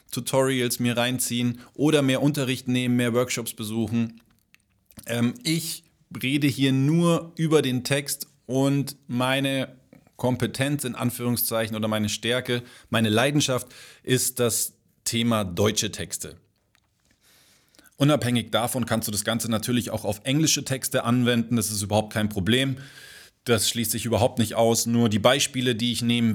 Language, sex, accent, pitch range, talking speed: German, male, German, 105-125 Hz, 140 wpm